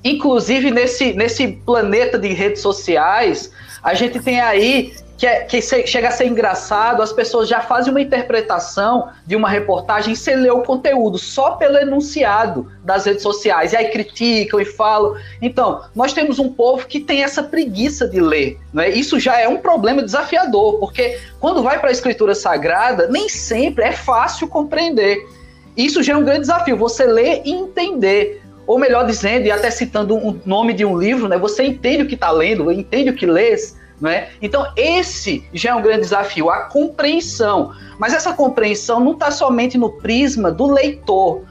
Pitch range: 210-280 Hz